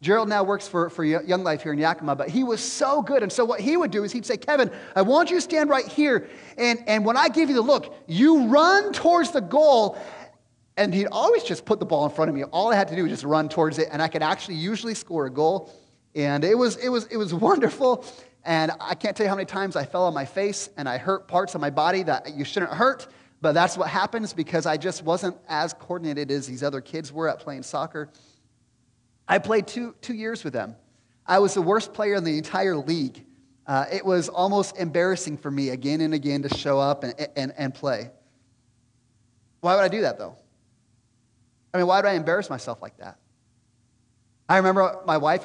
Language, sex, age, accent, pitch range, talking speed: English, male, 30-49, American, 140-215 Hz, 230 wpm